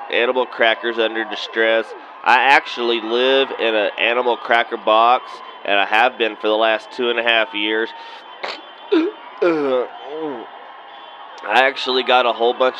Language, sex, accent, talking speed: English, male, American, 140 wpm